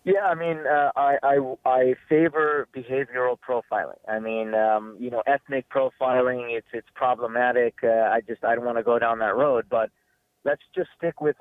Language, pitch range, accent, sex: English, 115-135 Hz, American, male